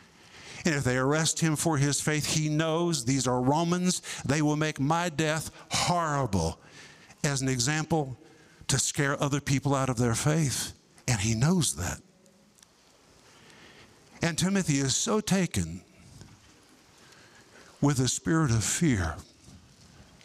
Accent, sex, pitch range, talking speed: American, male, 135-180 Hz, 130 wpm